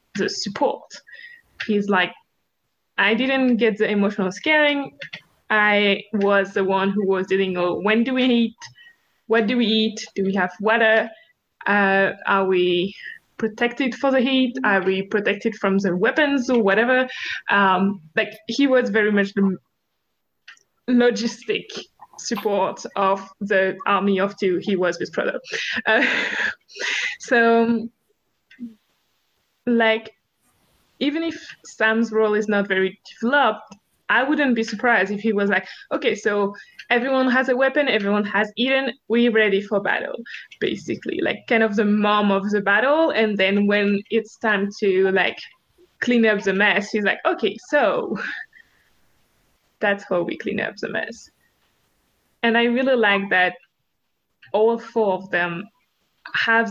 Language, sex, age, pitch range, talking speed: English, female, 20-39, 195-240 Hz, 145 wpm